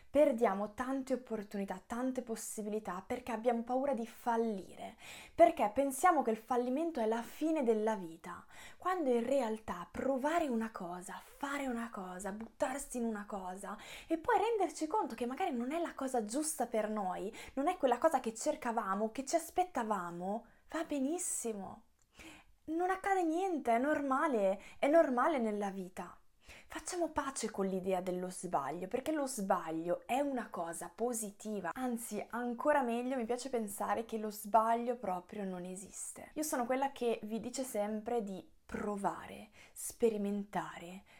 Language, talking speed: Italian, 145 wpm